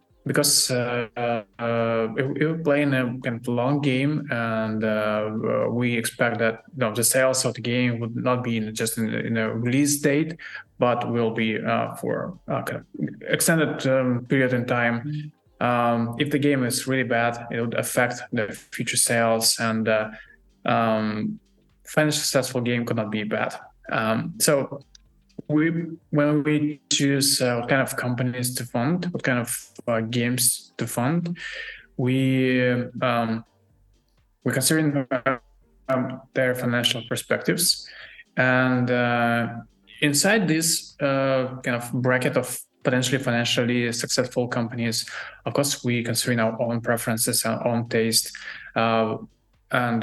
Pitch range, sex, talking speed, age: 115-135 Hz, male, 145 wpm, 20-39